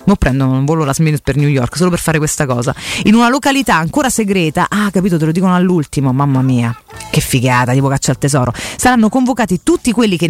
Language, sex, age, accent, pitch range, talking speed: Italian, female, 30-49, native, 155-230 Hz, 215 wpm